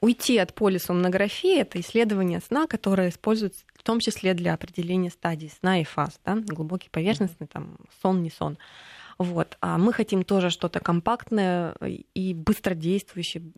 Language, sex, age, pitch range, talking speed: Russian, female, 20-39, 175-220 Hz, 145 wpm